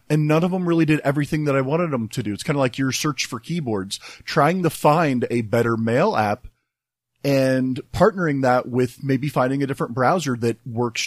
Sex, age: male, 30-49